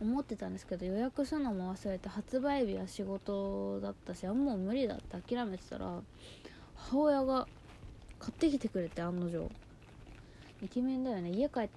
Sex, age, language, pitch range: female, 20-39, Japanese, 180-245 Hz